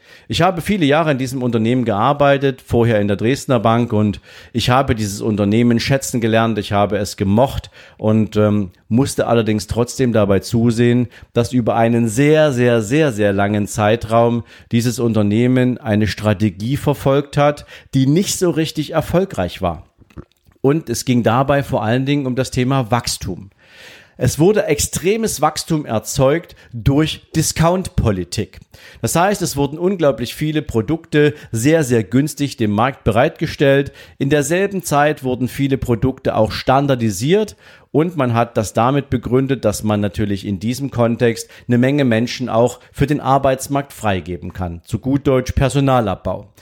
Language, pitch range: German, 110-145 Hz